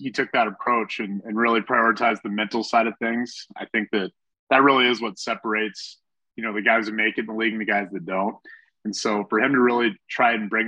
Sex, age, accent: male, 20-39, American